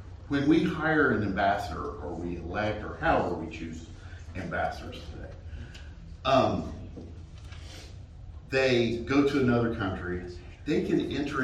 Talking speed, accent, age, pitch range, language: 120 wpm, American, 50-69, 85-110 Hz, English